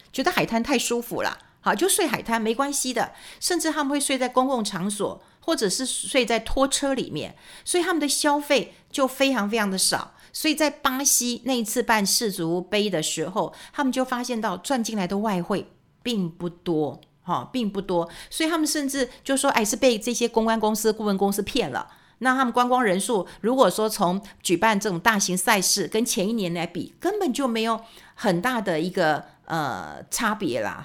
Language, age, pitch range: Chinese, 50-69, 190-260 Hz